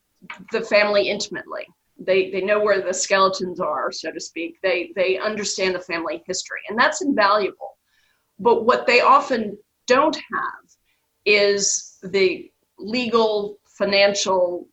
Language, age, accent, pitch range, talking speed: English, 40-59, American, 190-230 Hz, 130 wpm